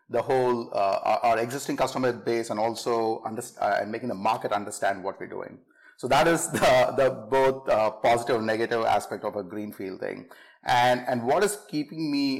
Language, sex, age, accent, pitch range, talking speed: English, male, 30-49, Indian, 115-135 Hz, 200 wpm